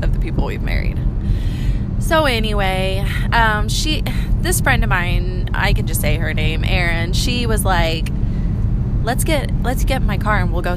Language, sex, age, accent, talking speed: English, female, 20-39, American, 180 wpm